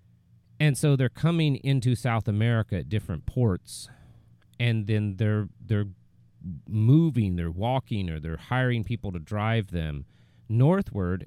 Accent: American